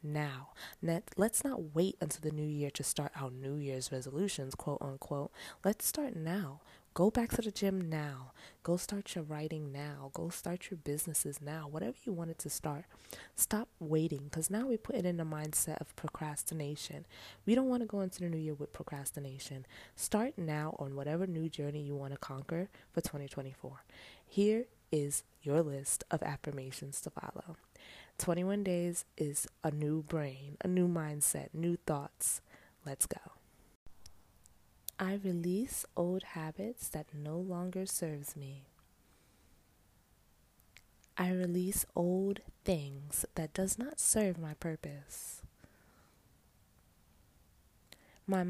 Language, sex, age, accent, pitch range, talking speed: English, female, 20-39, American, 145-185 Hz, 145 wpm